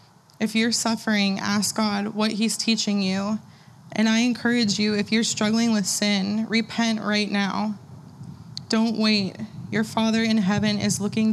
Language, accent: English, American